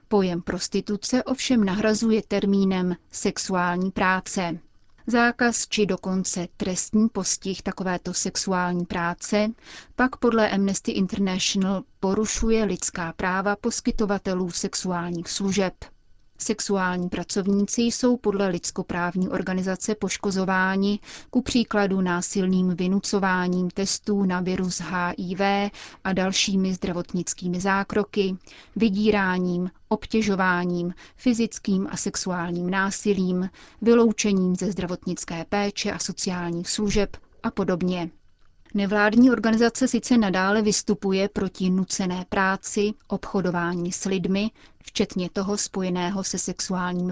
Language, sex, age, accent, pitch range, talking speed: Czech, female, 30-49, native, 185-210 Hz, 95 wpm